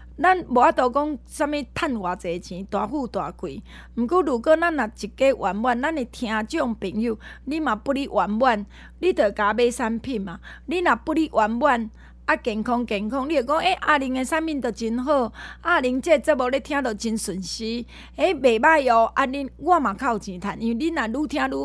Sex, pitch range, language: female, 210-285 Hz, Chinese